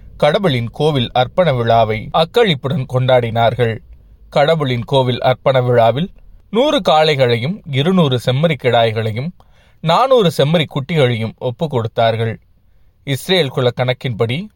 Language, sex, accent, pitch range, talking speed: Tamil, male, native, 115-145 Hz, 95 wpm